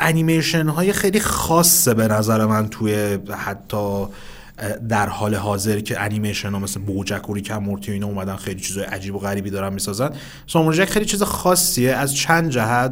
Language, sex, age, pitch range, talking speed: Persian, male, 30-49, 105-130 Hz, 165 wpm